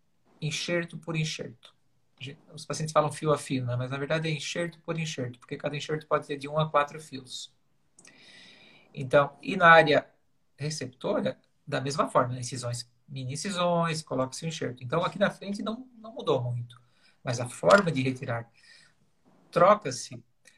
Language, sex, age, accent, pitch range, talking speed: Portuguese, male, 50-69, Brazilian, 130-170 Hz, 160 wpm